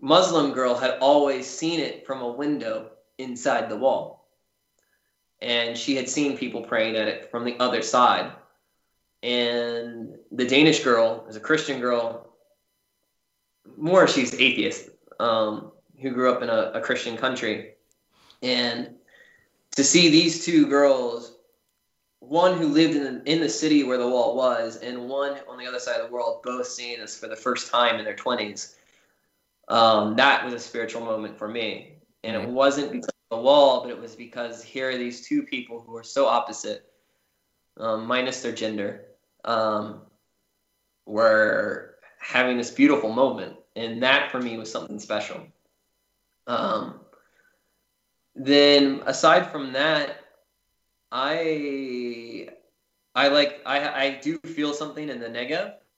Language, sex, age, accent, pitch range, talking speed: English, male, 20-39, American, 120-150 Hz, 150 wpm